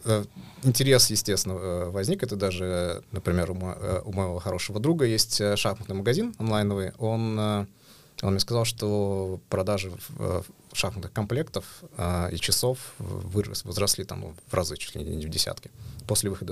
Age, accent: 20-39, native